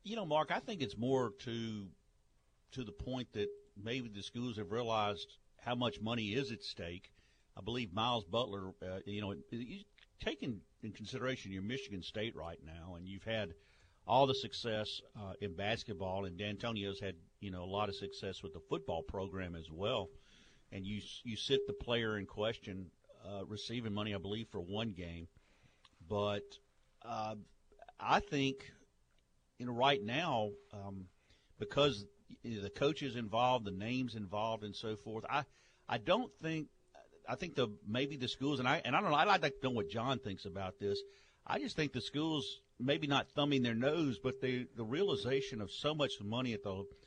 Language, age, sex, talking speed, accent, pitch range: English, 50-69, male, 185 wpm, American, 100-130 Hz